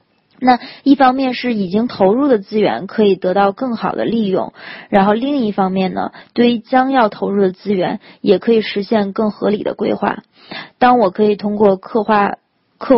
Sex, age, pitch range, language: female, 20-39, 200-240 Hz, Chinese